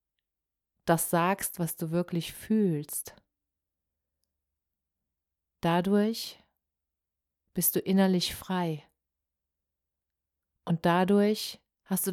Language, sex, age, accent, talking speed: German, female, 40-59, German, 75 wpm